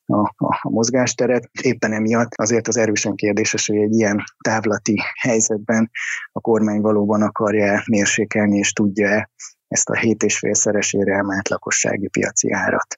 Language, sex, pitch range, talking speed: Hungarian, male, 105-125 Hz, 140 wpm